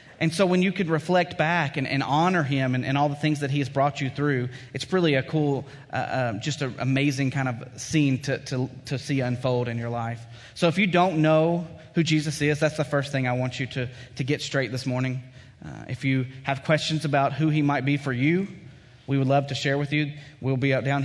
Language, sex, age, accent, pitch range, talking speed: English, male, 30-49, American, 125-145 Hz, 245 wpm